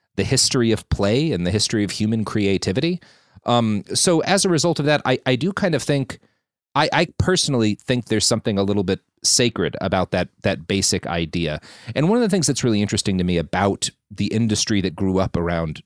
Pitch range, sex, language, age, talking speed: 95-120 Hz, male, English, 30-49, 210 wpm